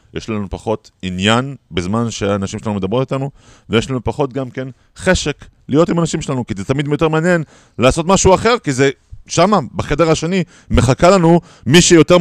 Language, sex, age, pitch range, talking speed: Hebrew, male, 30-49, 100-145 Hz, 175 wpm